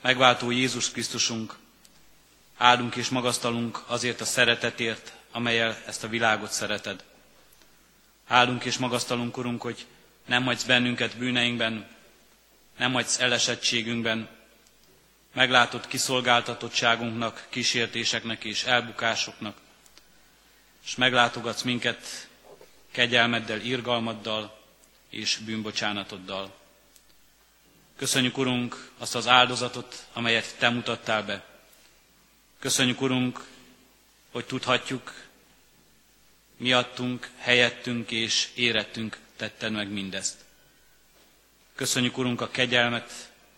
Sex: male